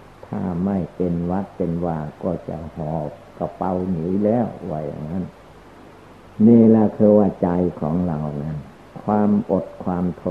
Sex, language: male, Thai